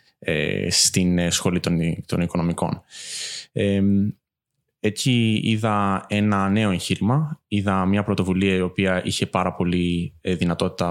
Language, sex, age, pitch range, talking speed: Greek, male, 20-39, 90-110 Hz, 110 wpm